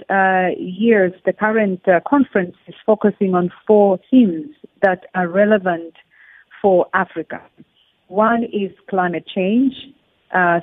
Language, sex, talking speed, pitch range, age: English, female, 120 wpm, 185-215 Hz, 40-59